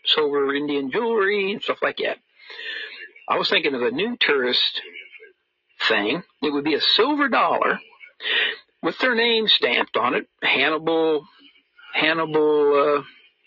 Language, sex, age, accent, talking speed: English, male, 60-79, American, 130 wpm